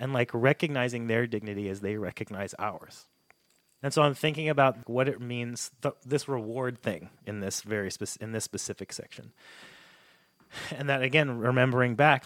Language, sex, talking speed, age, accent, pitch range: English, male, 145 wpm, 30-49, American, 115-145 Hz